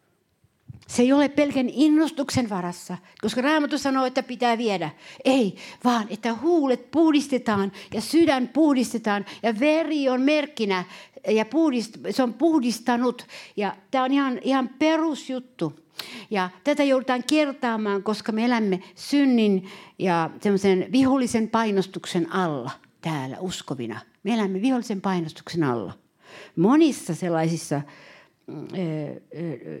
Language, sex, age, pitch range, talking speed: Finnish, female, 60-79, 170-255 Hz, 115 wpm